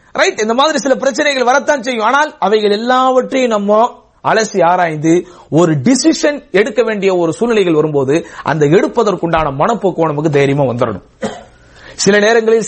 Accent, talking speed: Indian, 120 wpm